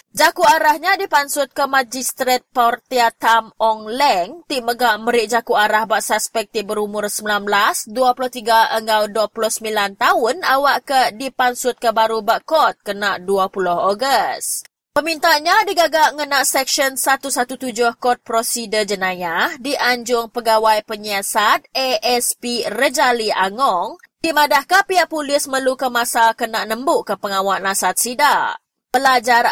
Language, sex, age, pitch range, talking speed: English, female, 20-39, 215-275 Hz, 120 wpm